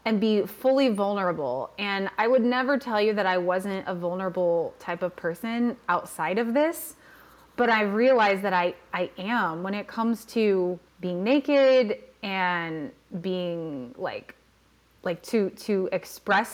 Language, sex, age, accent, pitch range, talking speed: English, female, 20-39, American, 180-230 Hz, 150 wpm